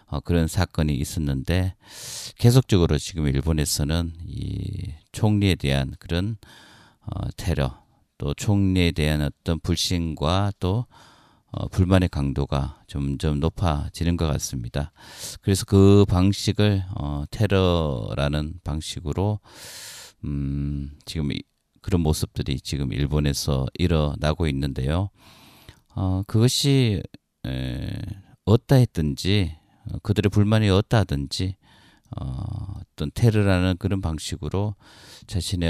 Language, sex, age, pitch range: Korean, male, 40-59, 75-100 Hz